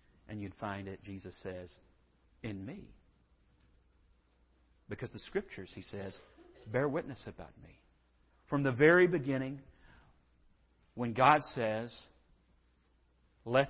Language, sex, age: English, male, 50-69